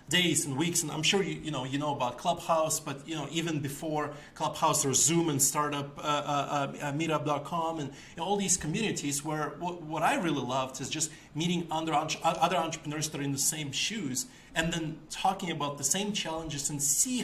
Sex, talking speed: male, 210 wpm